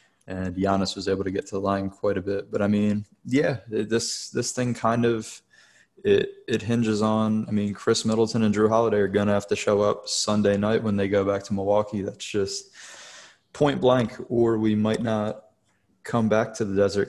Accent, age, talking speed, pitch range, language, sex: American, 20-39, 205 wpm, 100-110 Hz, English, male